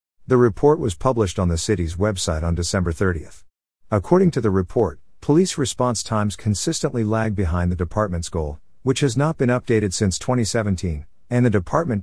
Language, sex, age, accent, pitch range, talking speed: English, male, 50-69, American, 90-115 Hz, 170 wpm